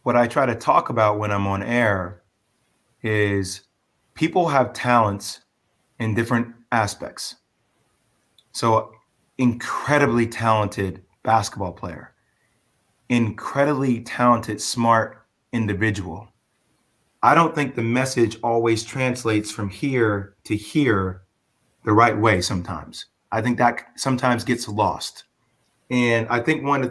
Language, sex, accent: English, male, American